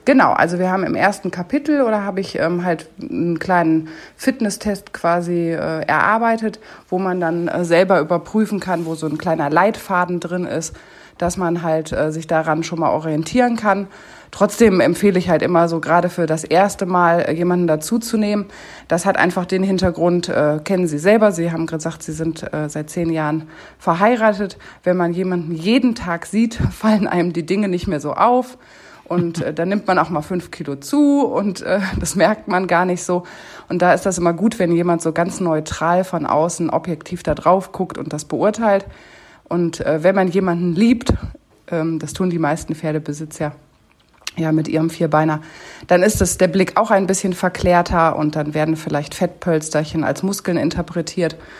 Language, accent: German, German